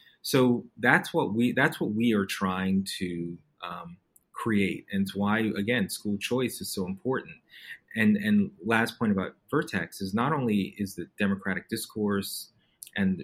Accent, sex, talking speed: American, male, 160 wpm